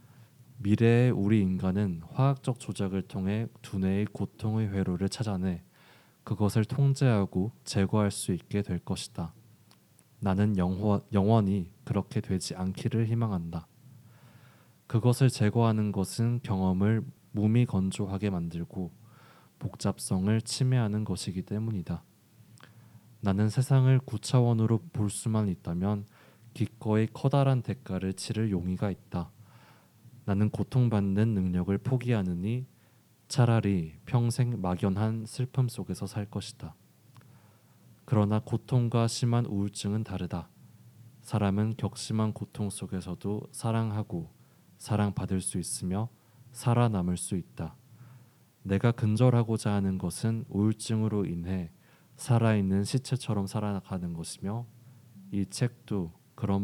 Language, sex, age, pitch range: Korean, male, 20-39, 95-120 Hz